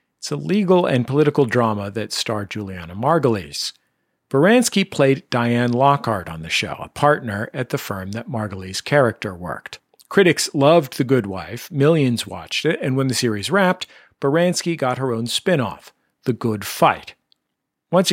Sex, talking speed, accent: male, 160 wpm, American